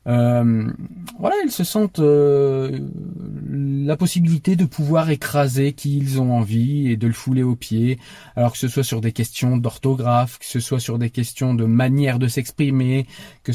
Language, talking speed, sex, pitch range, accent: French, 175 wpm, male, 115-140 Hz, French